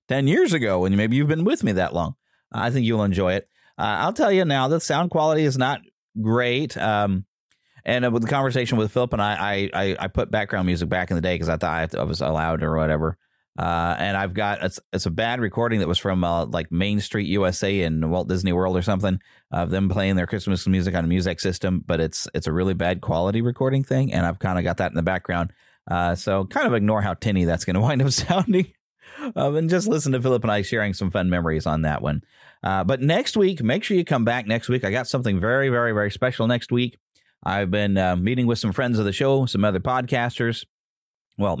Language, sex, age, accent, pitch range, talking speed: English, male, 30-49, American, 90-120 Hz, 240 wpm